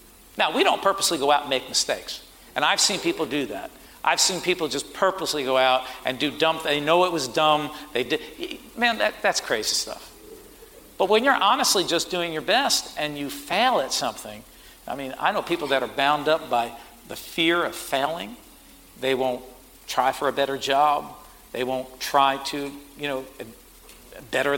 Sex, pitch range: male, 135-170 Hz